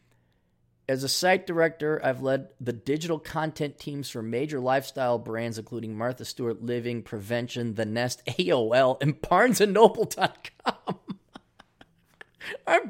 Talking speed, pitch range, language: 115 wpm, 110-165 Hz, English